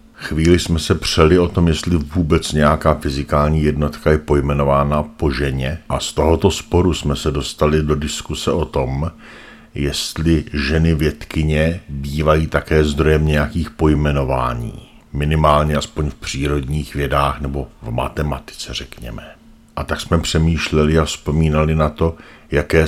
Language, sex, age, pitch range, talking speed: Czech, male, 50-69, 75-80 Hz, 135 wpm